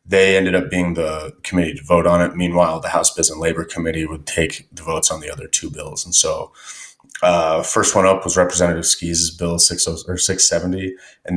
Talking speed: 215 wpm